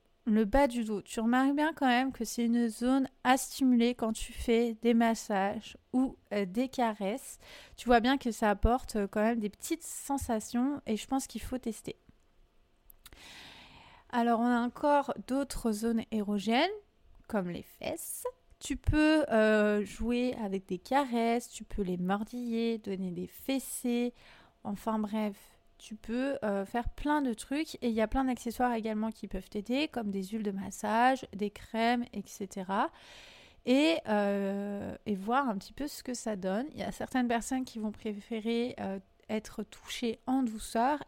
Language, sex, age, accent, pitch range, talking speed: French, female, 30-49, French, 205-250 Hz, 170 wpm